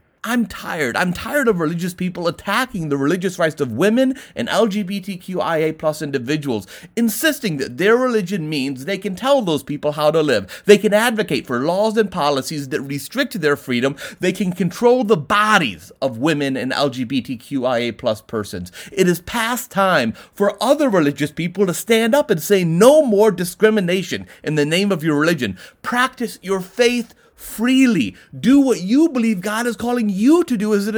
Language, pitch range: English, 145-220 Hz